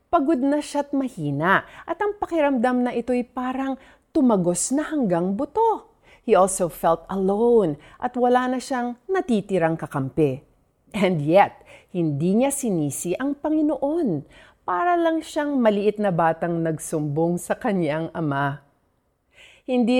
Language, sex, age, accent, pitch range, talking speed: Filipino, female, 40-59, native, 165-260 Hz, 130 wpm